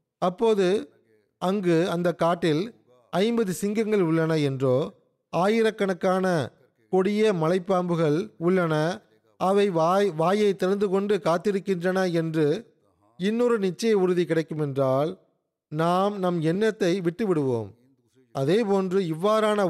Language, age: Tamil, 30-49